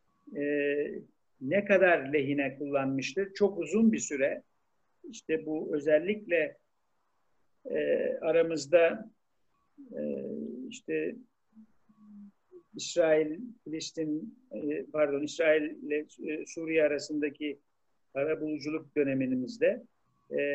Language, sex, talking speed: Turkish, male, 80 wpm